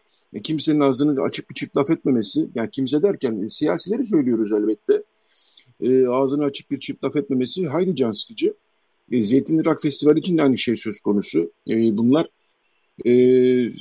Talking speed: 150 wpm